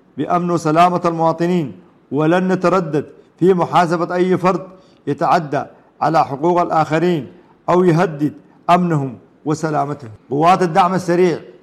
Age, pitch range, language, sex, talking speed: 50-69, 145-175 Hz, English, male, 105 wpm